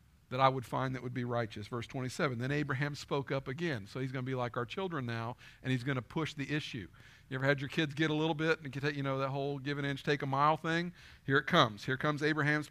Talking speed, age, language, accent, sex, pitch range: 275 wpm, 50-69, English, American, male, 135-195 Hz